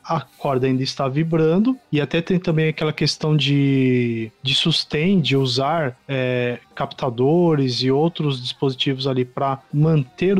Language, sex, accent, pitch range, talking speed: Portuguese, male, Brazilian, 135-180 Hz, 140 wpm